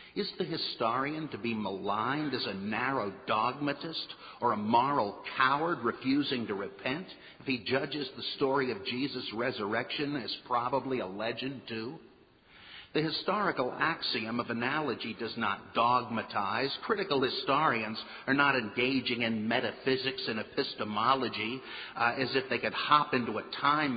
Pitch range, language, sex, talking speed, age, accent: 120-165 Hz, English, male, 140 wpm, 50-69, American